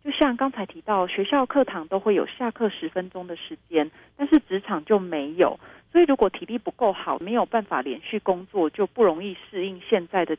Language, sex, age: Chinese, female, 30-49